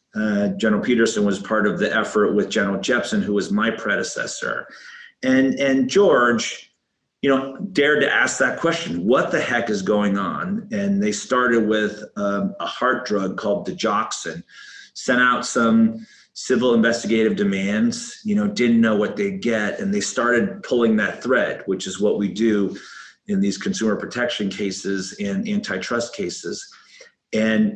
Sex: male